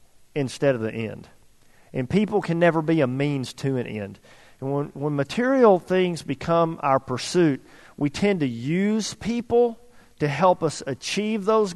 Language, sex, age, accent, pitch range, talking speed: English, male, 50-69, American, 140-185 Hz, 165 wpm